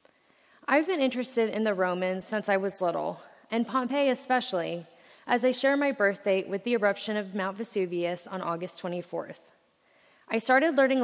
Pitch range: 185-235 Hz